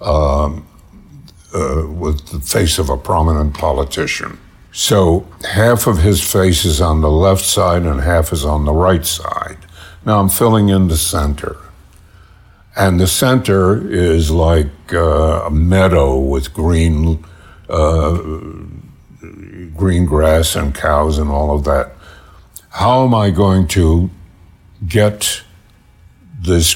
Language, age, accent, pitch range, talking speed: English, 60-79, American, 80-100 Hz, 130 wpm